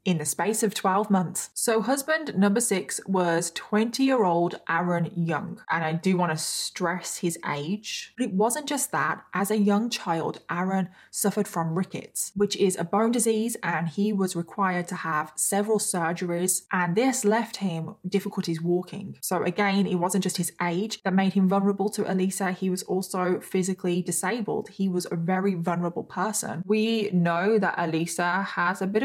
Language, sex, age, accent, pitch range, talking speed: English, female, 20-39, British, 175-215 Hz, 175 wpm